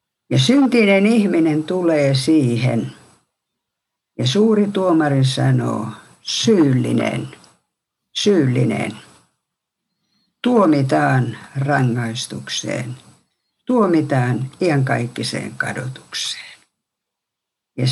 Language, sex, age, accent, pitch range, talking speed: Finnish, female, 60-79, native, 120-165 Hz, 55 wpm